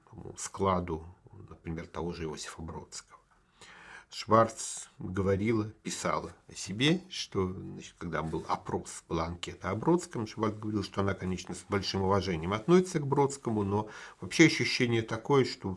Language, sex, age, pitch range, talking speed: Russian, male, 50-69, 95-125 Hz, 135 wpm